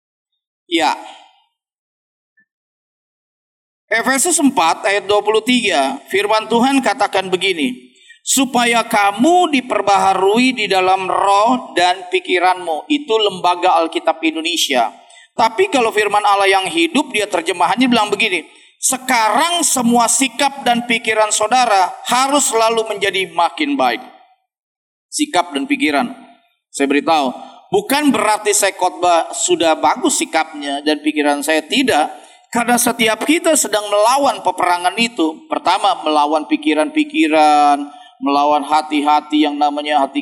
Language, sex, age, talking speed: Indonesian, male, 40-59, 110 wpm